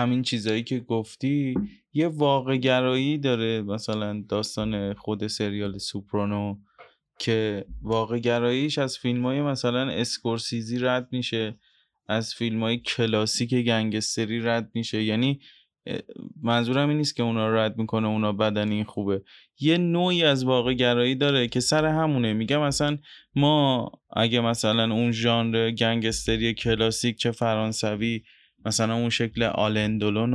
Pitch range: 110-130 Hz